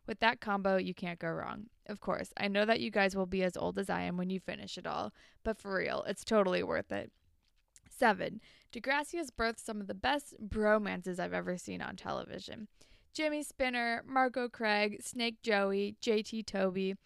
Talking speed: 195 wpm